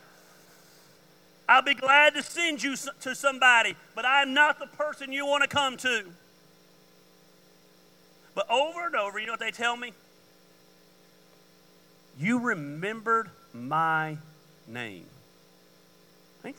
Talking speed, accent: 120 wpm, American